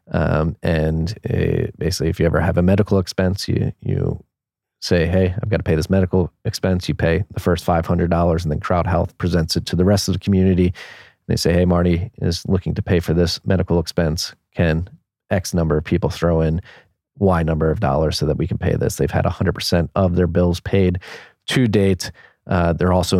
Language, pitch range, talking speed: English, 85-95 Hz, 210 wpm